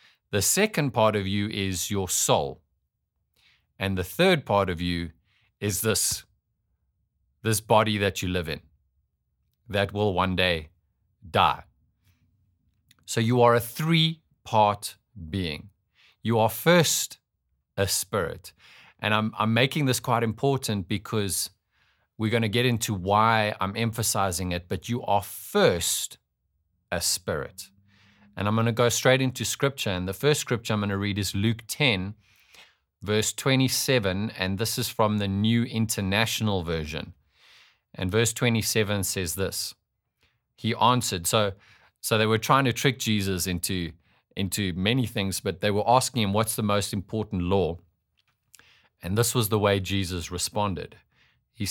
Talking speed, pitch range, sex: 145 wpm, 95-115 Hz, male